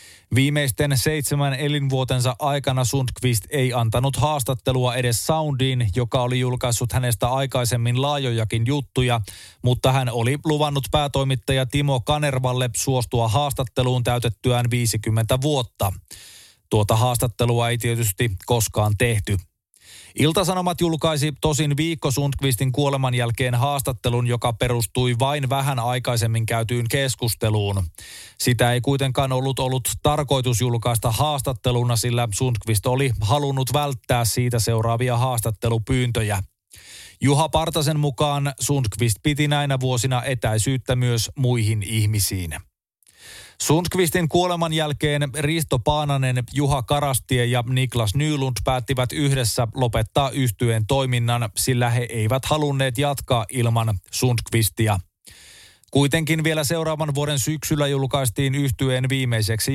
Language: Finnish